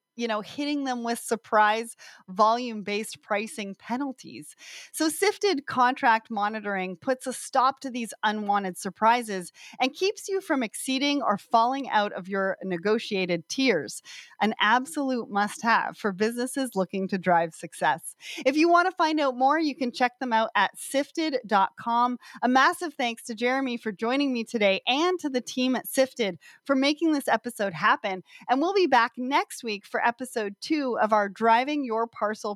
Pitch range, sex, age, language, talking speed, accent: 210-275 Hz, female, 30-49, English, 165 wpm, American